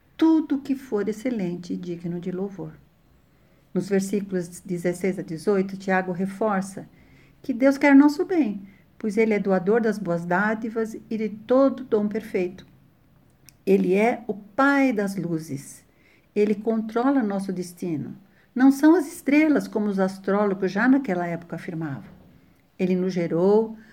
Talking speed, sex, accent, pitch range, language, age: 140 wpm, female, Brazilian, 180-235 Hz, Portuguese, 60-79